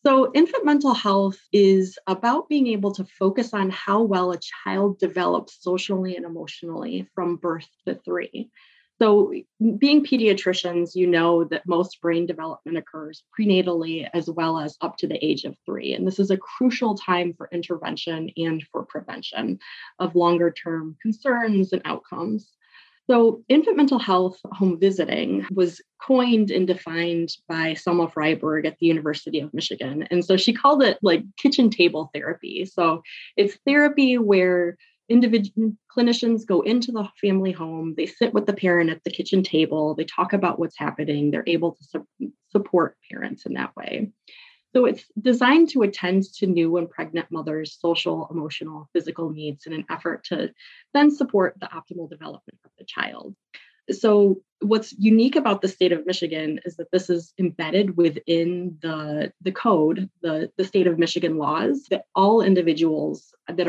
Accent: American